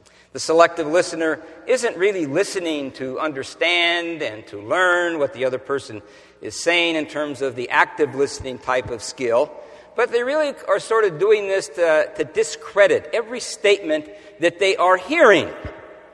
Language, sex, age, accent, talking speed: English, male, 50-69, American, 160 wpm